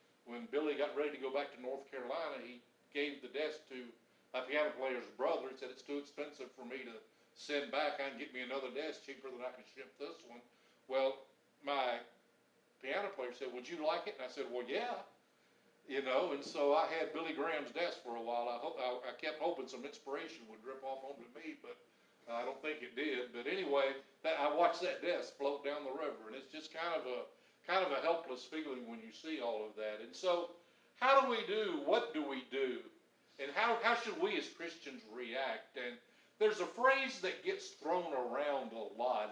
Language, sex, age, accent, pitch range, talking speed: English, male, 60-79, American, 130-210 Hz, 220 wpm